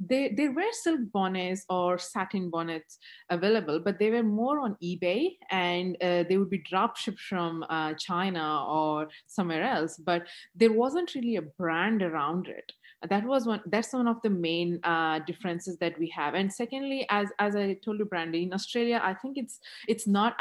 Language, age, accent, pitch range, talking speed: English, 30-49, Indian, 165-205 Hz, 190 wpm